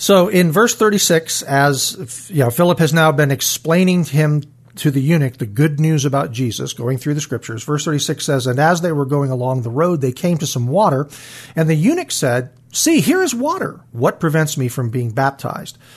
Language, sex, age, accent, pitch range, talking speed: English, male, 50-69, American, 135-175 Hz, 205 wpm